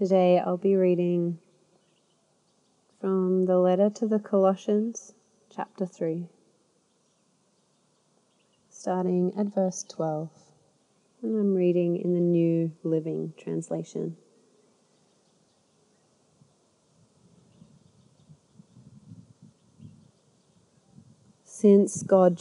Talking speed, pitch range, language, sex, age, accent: 70 wpm, 170-195 Hz, English, female, 30-49, Australian